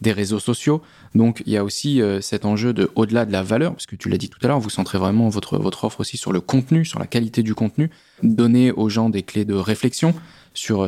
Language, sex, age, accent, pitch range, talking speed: French, male, 20-39, French, 105-125 Hz, 270 wpm